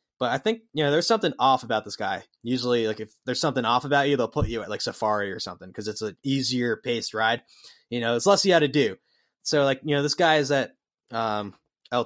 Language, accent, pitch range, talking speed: English, American, 115-150 Hz, 255 wpm